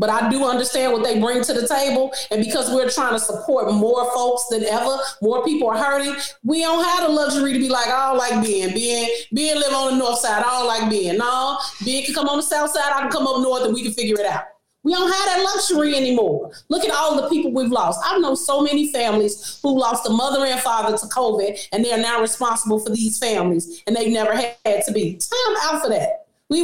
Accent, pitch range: American, 230-295 Hz